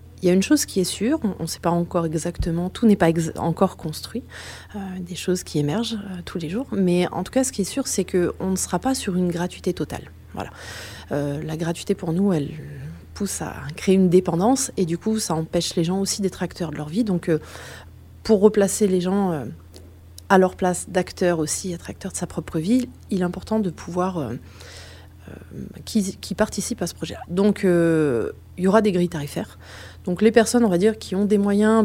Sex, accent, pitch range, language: female, French, 155-195 Hz, French